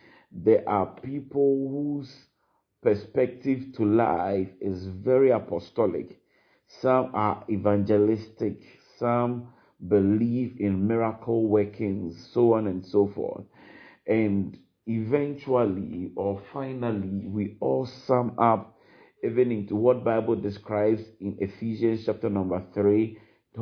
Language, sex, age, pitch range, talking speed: English, male, 50-69, 105-125 Hz, 105 wpm